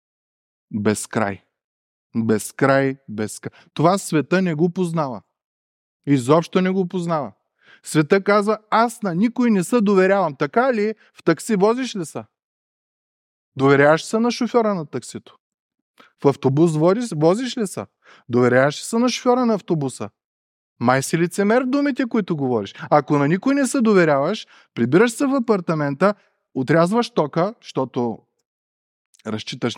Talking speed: 140 wpm